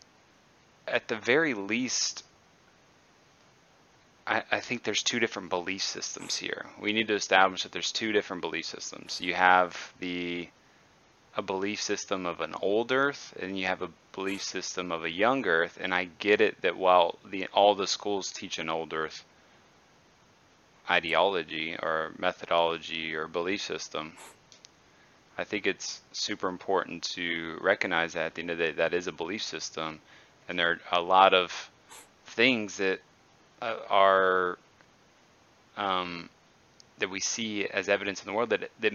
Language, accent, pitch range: English, American, 90-110 Hz